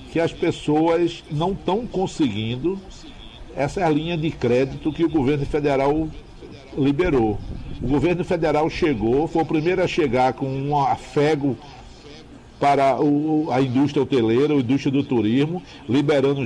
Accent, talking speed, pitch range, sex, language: Brazilian, 130 wpm, 135-170 Hz, male, Portuguese